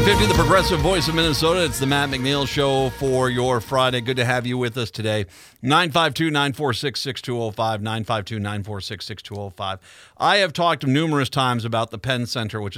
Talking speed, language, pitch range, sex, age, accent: 150 wpm, English, 120-155 Hz, male, 40-59, American